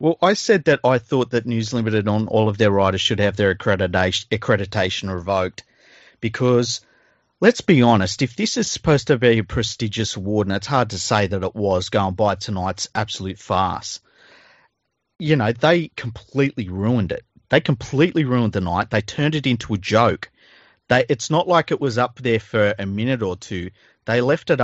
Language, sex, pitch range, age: English, male, 105-130 Hz, 40-59